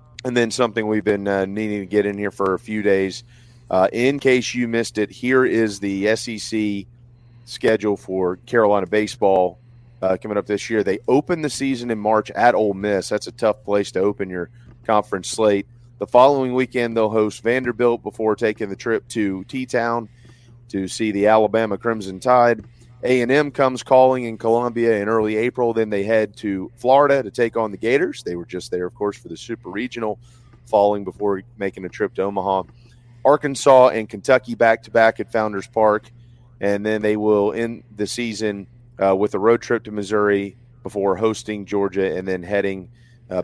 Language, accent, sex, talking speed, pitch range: English, American, male, 185 wpm, 100-120 Hz